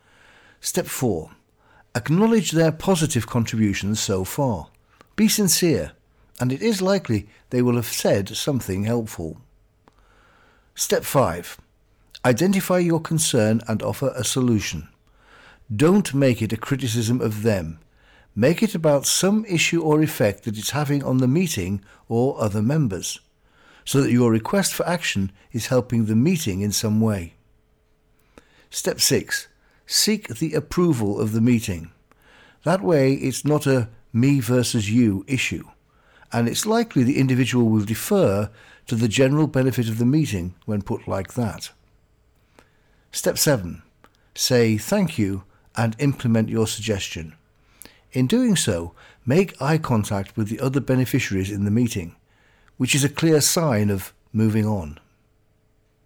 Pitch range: 105-145 Hz